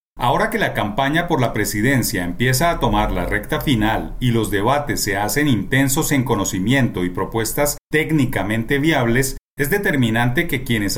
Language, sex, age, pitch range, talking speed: Spanish, male, 40-59, 115-150 Hz, 160 wpm